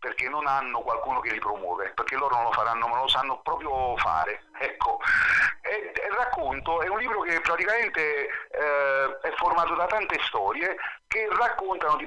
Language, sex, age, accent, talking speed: Italian, male, 40-59, native, 170 wpm